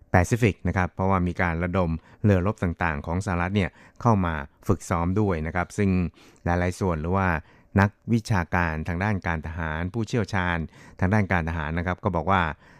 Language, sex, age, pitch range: Thai, male, 60-79, 85-100 Hz